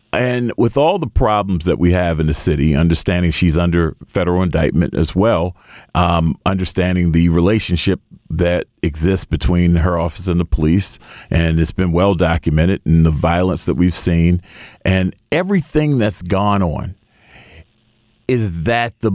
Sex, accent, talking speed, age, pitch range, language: male, American, 155 wpm, 40-59, 85-110 Hz, English